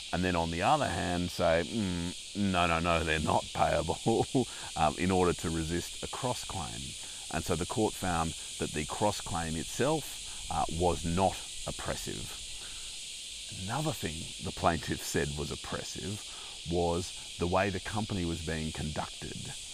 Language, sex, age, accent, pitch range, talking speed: English, male, 30-49, Australian, 80-95 Hz, 150 wpm